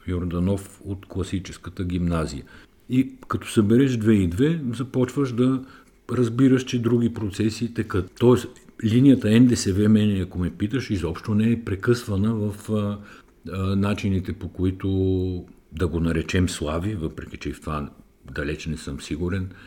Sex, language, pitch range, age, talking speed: male, Bulgarian, 85-110 Hz, 50-69, 145 wpm